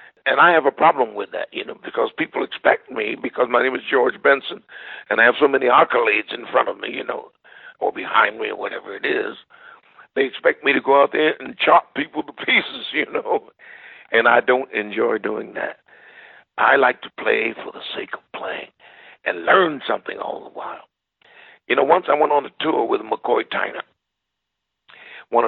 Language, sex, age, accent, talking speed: English, male, 60-79, American, 200 wpm